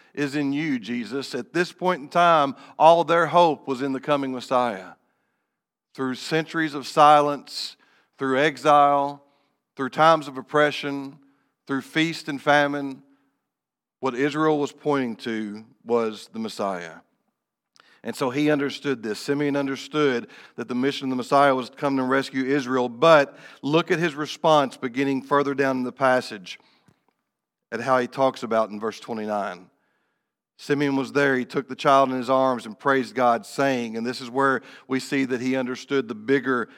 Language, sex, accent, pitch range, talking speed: English, male, American, 120-145 Hz, 165 wpm